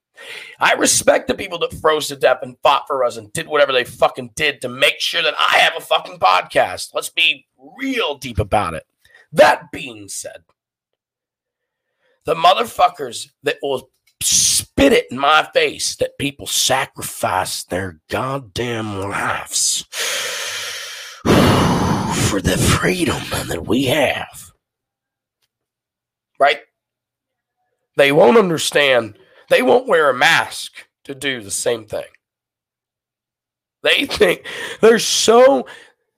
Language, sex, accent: English, male, American